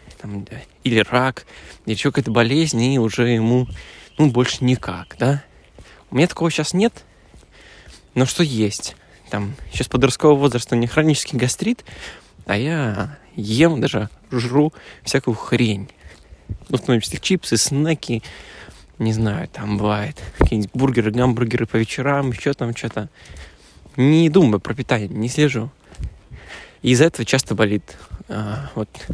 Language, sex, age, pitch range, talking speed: Russian, male, 20-39, 105-135 Hz, 140 wpm